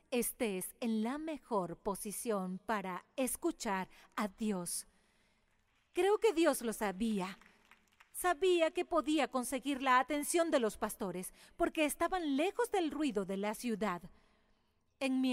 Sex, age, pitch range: female, 40-59, 200-285 Hz